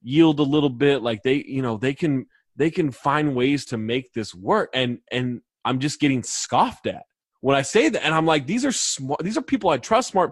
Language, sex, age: English, male, 20-39